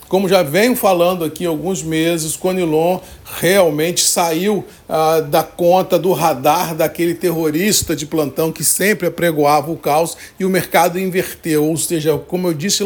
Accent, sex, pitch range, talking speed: Brazilian, male, 165-195 Hz, 160 wpm